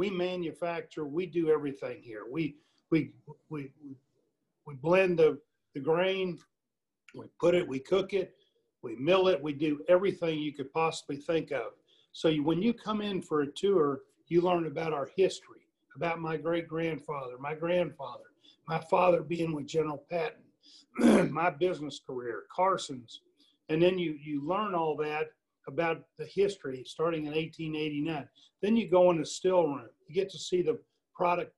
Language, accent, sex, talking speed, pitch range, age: English, American, male, 165 wpm, 150-180 Hz, 50-69